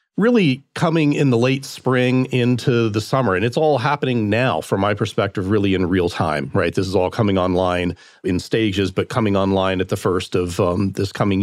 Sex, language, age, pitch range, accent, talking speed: male, English, 40-59, 100-130 Hz, American, 205 wpm